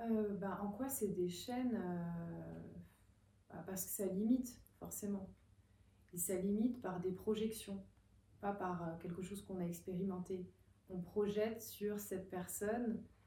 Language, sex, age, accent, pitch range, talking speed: French, female, 30-49, French, 170-200 Hz, 150 wpm